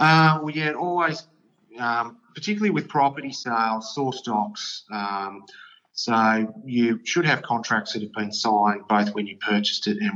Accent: Australian